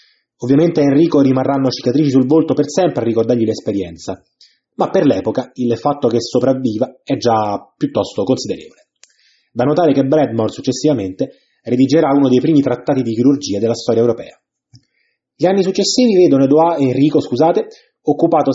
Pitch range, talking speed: 125-165 Hz, 150 wpm